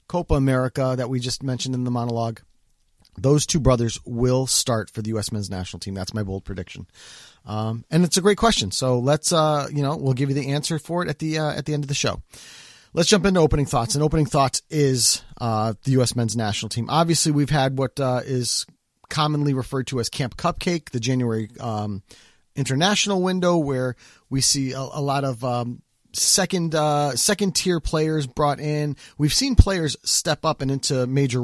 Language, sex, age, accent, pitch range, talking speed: English, male, 30-49, American, 125-155 Hz, 200 wpm